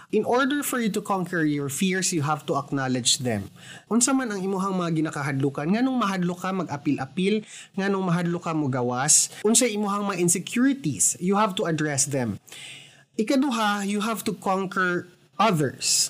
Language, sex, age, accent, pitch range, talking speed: Filipino, male, 20-39, native, 160-220 Hz, 165 wpm